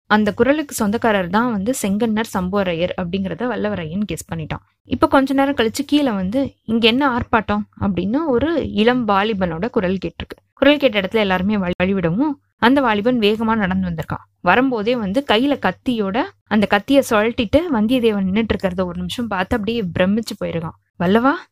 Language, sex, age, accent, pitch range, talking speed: Tamil, female, 20-39, native, 190-245 Hz, 150 wpm